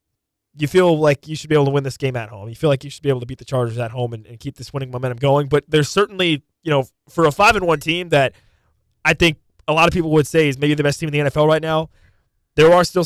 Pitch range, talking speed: 120-145 Hz, 295 wpm